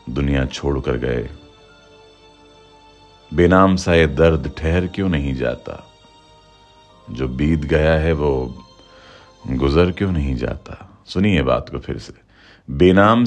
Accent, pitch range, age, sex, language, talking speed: native, 75-100 Hz, 40-59, male, Hindi, 120 wpm